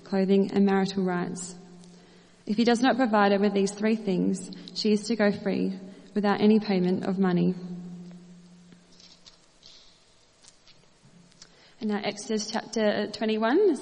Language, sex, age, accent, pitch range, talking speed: English, female, 20-39, Australian, 190-215 Hz, 125 wpm